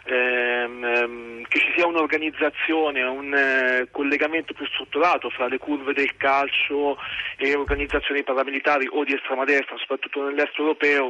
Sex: male